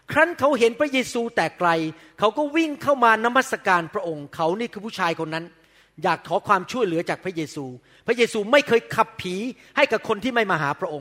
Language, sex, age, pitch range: Thai, male, 30-49, 175-260 Hz